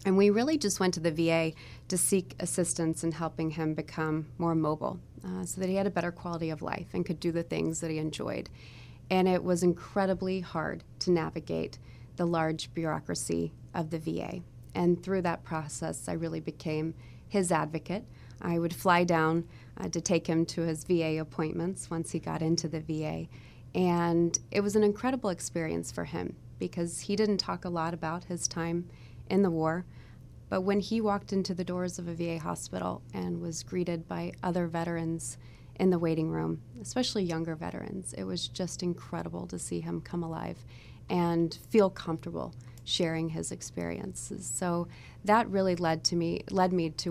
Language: English